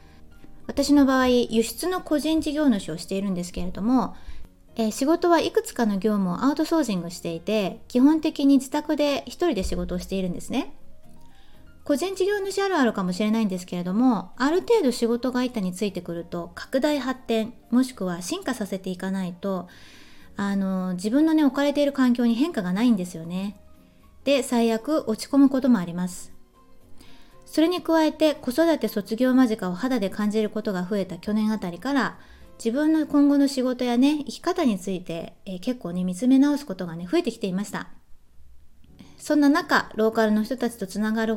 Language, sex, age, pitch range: Japanese, female, 20-39, 190-275 Hz